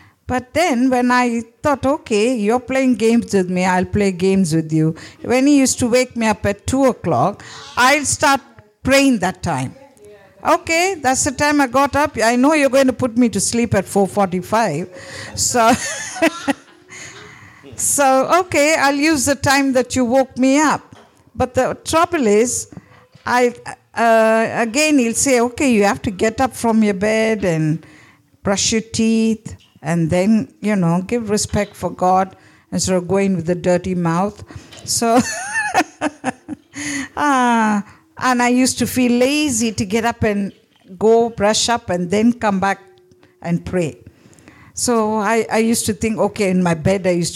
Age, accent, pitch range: 50-69, Indian, 195-265 Hz